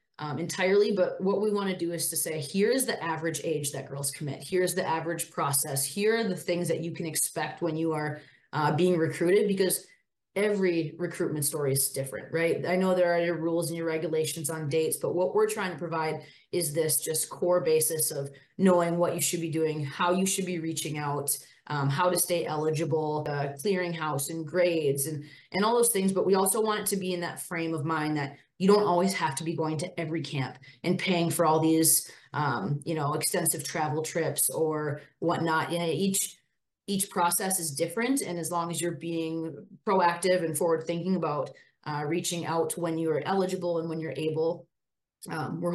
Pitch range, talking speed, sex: 155-180 Hz, 210 wpm, female